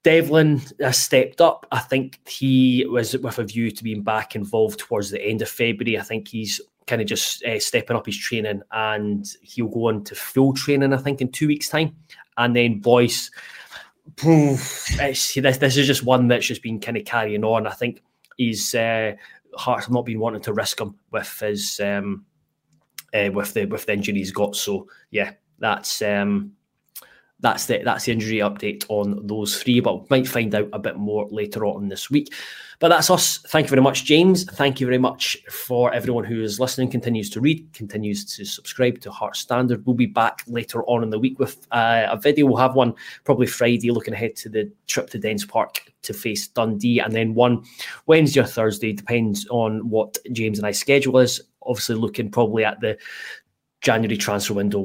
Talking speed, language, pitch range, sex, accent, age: 200 wpm, English, 105-130 Hz, male, British, 20-39